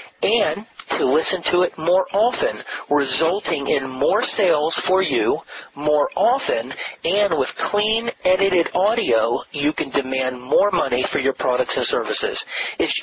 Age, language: 40-59, English